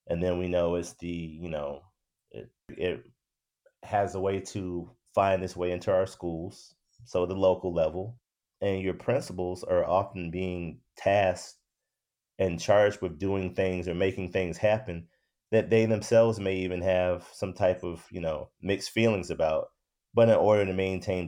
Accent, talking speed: American, 165 wpm